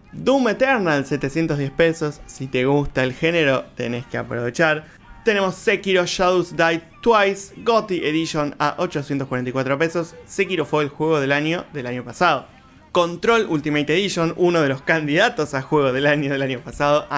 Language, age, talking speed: Spanish, 20-39, 160 wpm